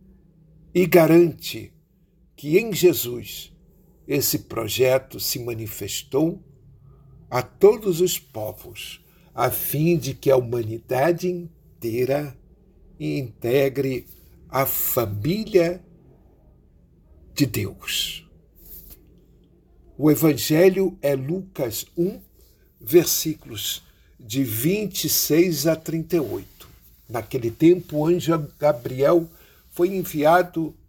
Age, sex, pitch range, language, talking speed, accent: 60-79, male, 115-170 Hz, Portuguese, 80 wpm, Brazilian